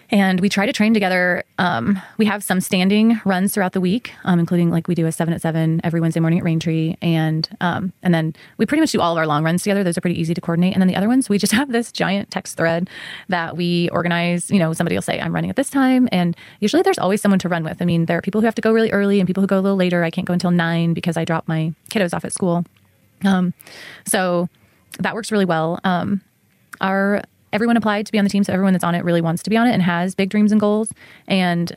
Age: 20-39